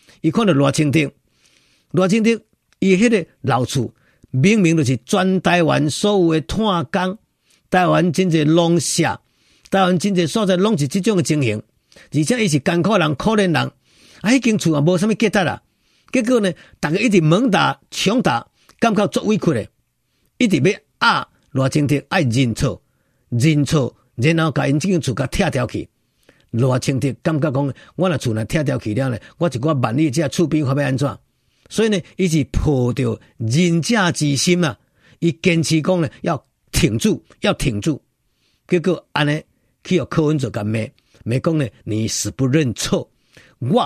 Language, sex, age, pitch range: Chinese, male, 50-69, 130-180 Hz